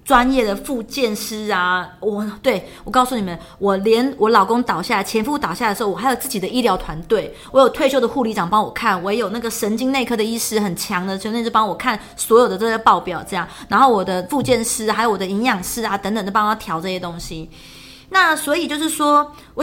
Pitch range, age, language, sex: 200-265 Hz, 30-49, Chinese, female